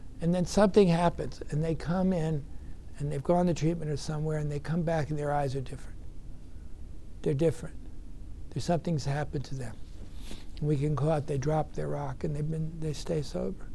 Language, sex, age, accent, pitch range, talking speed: English, male, 60-79, American, 145-175 Hz, 195 wpm